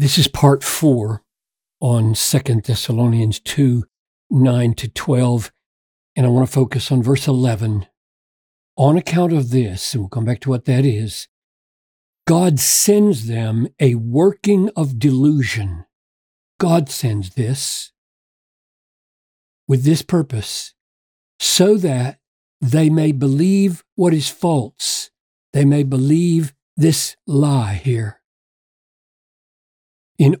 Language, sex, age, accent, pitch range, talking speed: English, male, 50-69, American, 125-165 Hz, 110 wpm